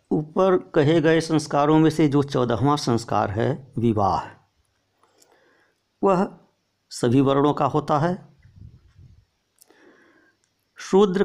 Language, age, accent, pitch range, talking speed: Hindi, 60-79, native, 115-145 Hz, 95 wpm